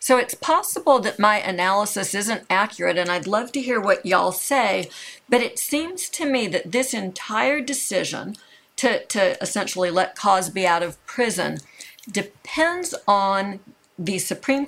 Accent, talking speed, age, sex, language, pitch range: American, 150 wpm, 50-69, female, English, 185-265 Hz